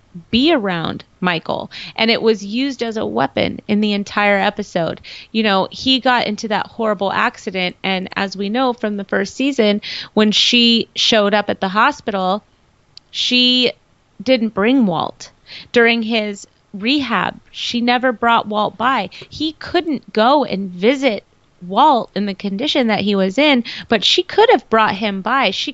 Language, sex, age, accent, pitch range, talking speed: English, female, 30-49, American, 200-255 Hz, 165 wpm